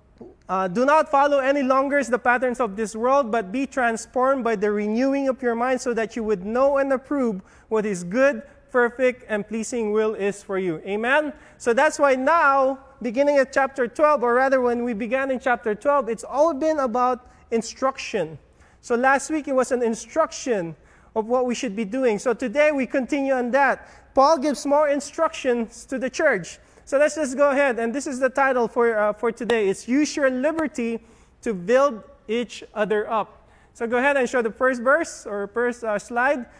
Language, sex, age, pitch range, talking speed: English, male, 20-39, 235-285 Hz, 195 wpm